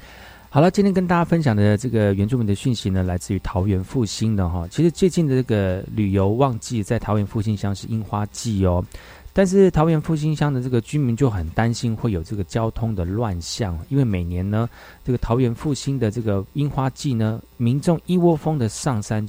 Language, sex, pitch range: Chinese, male, 95-135 Hz